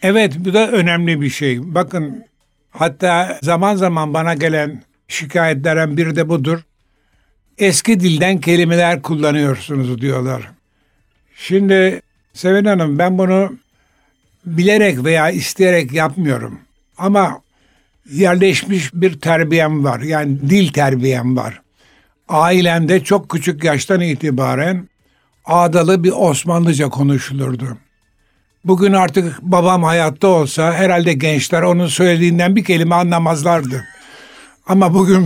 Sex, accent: male, native